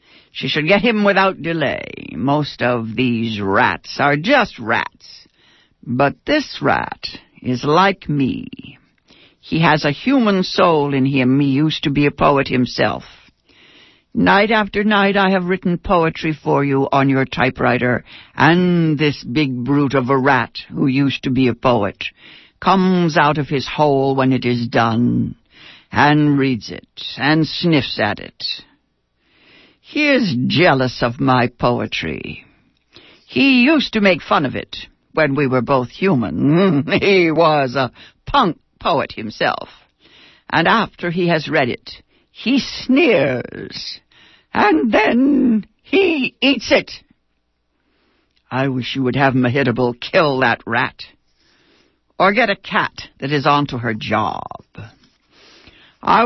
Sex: female